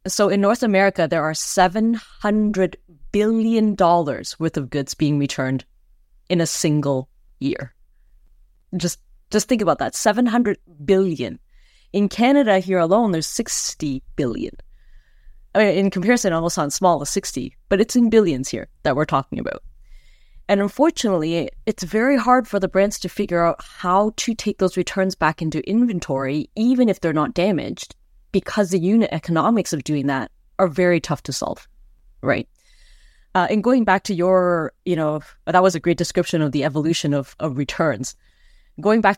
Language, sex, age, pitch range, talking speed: English, female, 30-49, 155-200 Hz, 165 wpm